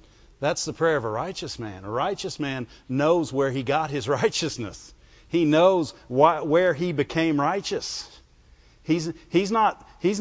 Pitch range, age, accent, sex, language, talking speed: 135-215 Hz, 50-69, American, male, English, 160 wpm